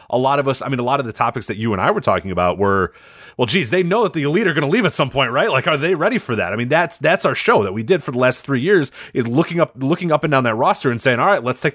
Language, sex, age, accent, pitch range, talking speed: English, male, 30-49, American, 105-140 Hz, 350 wpm